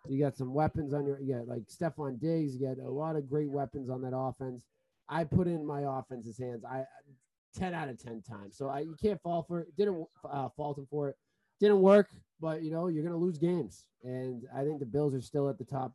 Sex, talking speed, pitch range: male, 240 wpm, 130-160 Hz